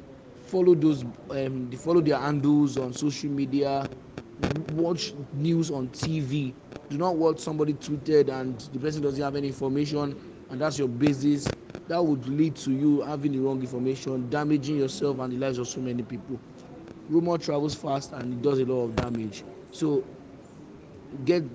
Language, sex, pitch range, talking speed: English, male, 130-150 Hz, 165 wpm